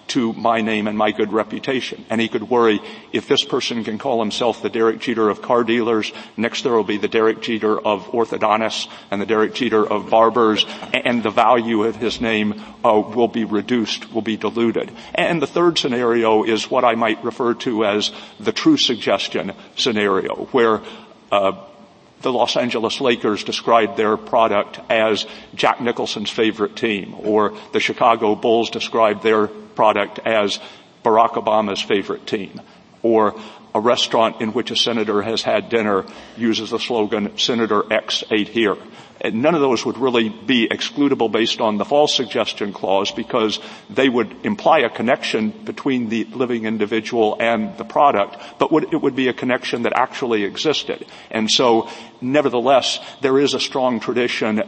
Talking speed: 165 wpm